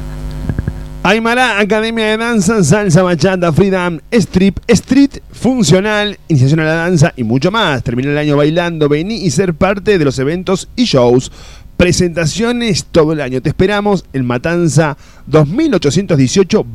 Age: 30-49